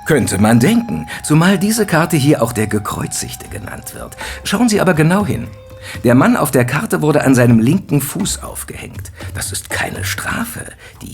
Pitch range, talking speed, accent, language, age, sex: 95-135 Hz, 180 wpm, German, English, 60-79, male